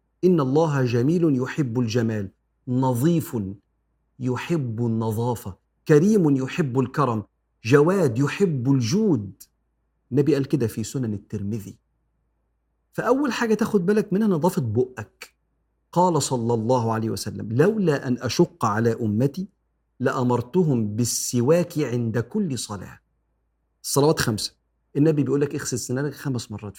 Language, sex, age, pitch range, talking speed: Arabic, male, 40-59, 115-165 Hz, 110 wpm